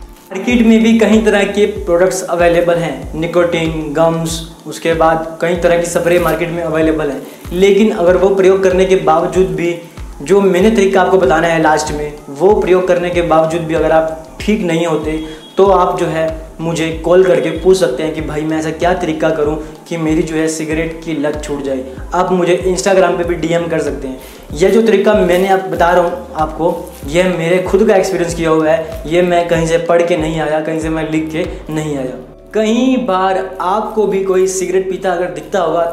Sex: male